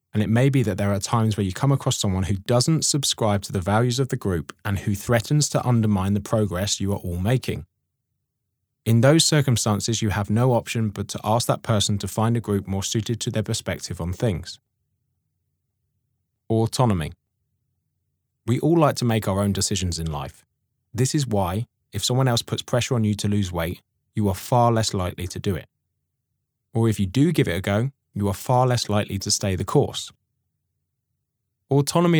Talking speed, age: 200 wpm, 20-39